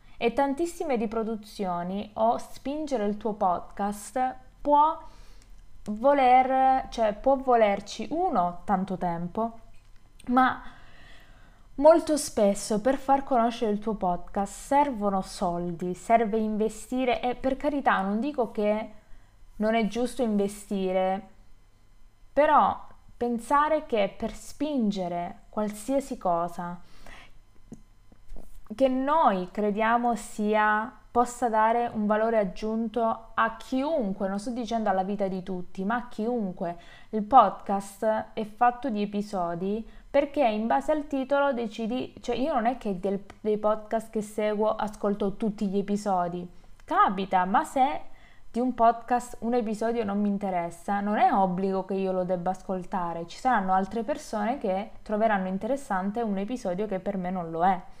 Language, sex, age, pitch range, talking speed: Italian, female, 20-39, 195-245 Hz, 130 wpm